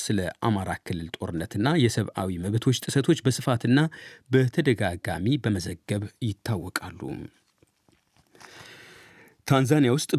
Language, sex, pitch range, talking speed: Amharic, male, 105-130 Hz, 70 wpm